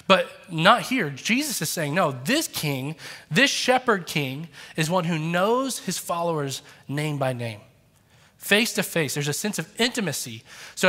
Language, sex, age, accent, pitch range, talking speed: English, male, 20-39, American, 140-190 Hz, 165 wpm